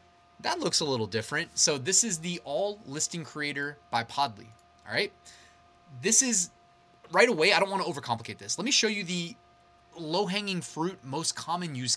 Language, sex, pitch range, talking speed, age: English, male, 130-180 Hz, 185 wpm, 20-39